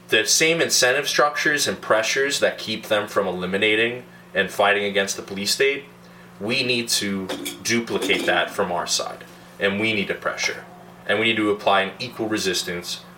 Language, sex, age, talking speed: English, male, 20-39, 175 wpm